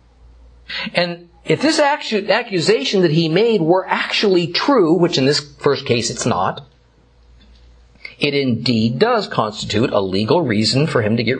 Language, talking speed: English, 145 wpm